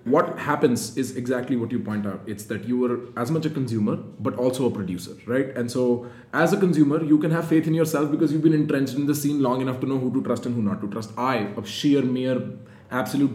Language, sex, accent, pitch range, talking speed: English, male, Indian, 115-150 Hz, 250 wpm